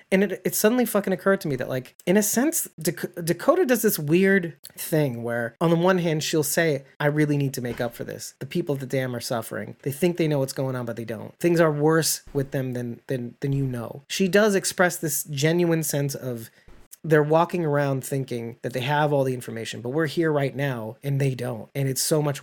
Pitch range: 140-180 Hz